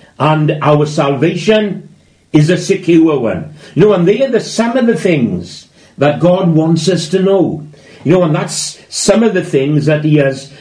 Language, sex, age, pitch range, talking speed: English, male, 60-79, 135-180 Hz, 185 wpm